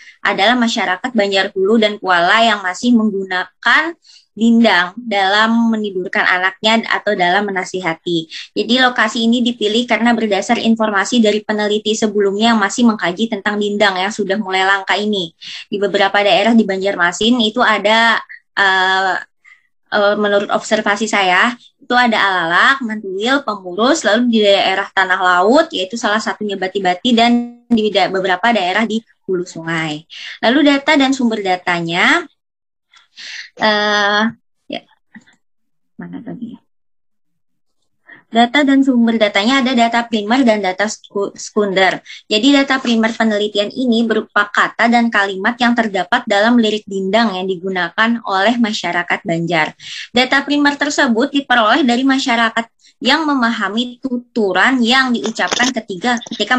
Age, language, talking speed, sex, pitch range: 20-39, Indonesian, 125 wpm, male, 195-240 Hz